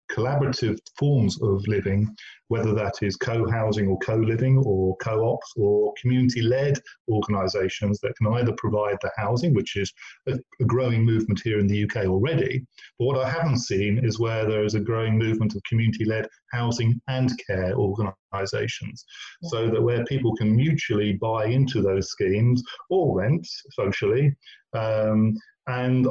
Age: 40-59